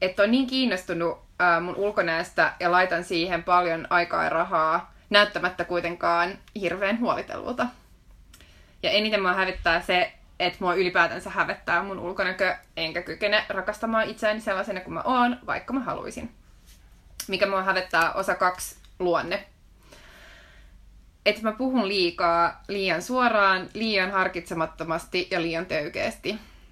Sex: female